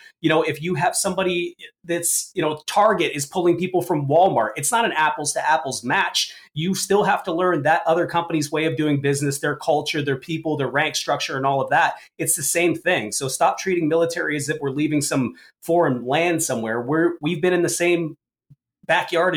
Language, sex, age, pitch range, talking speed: English, male, 30-49, 140-165 Hz, 210 wpm